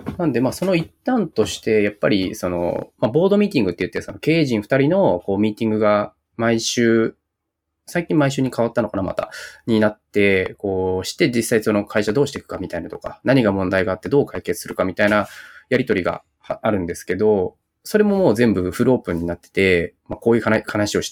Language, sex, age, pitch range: Japanese, male, 20-39, 95-125 Hz